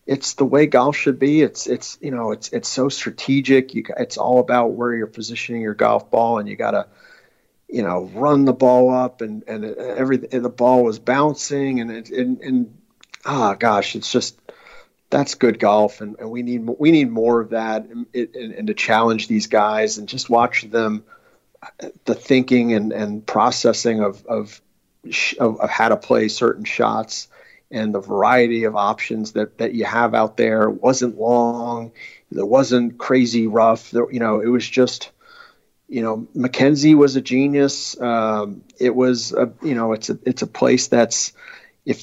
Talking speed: 185 wpm